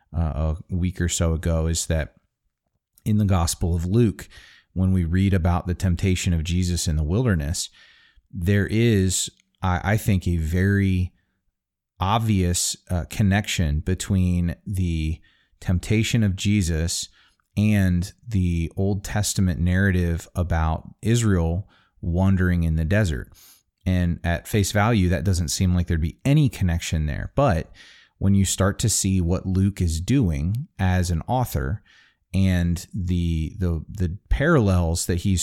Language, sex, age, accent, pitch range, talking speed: English, male, 30-49, American, 85-100 Hz, 140 wpm